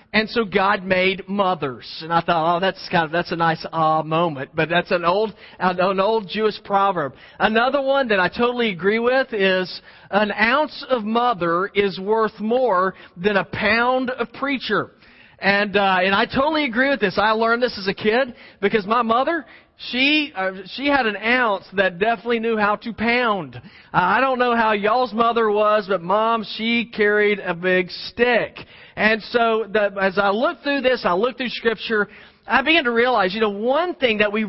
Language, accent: English, American